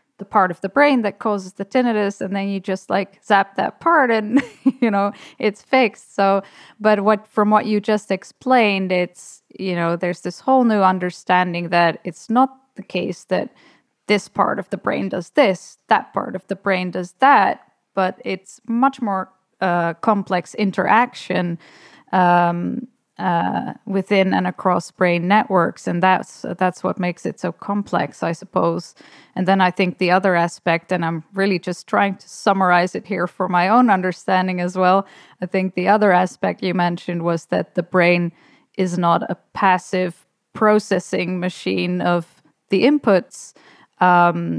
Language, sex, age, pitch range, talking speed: English, female, 10-29, 175-205 Hz, 170 wpm